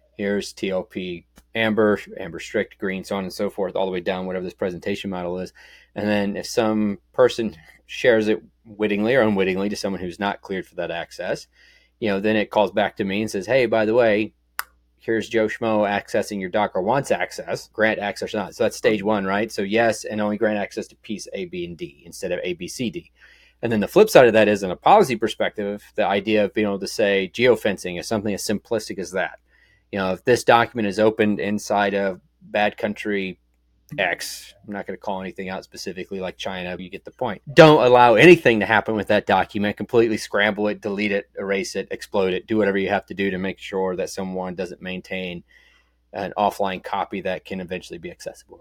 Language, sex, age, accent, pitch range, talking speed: English, male, 30-49, American, 95-110 Hz, 220 wpm